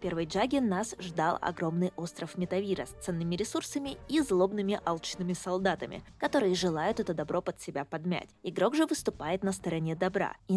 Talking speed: 165 wpm